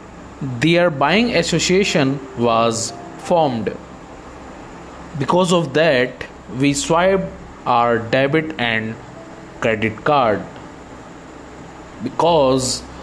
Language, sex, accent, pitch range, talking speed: English, male, Indian, 120-165 Hz, 75 wpm